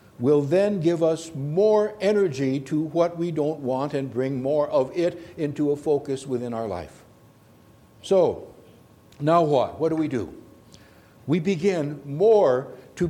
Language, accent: English, American